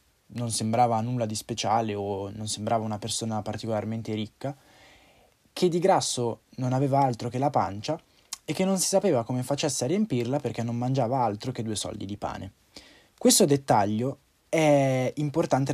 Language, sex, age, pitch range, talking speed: Italian, male, 20-39, 115-145 Hz, 165 wpm